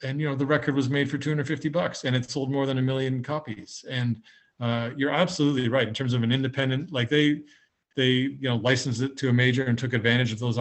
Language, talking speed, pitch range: English, 245 wpm, 115-140 Hz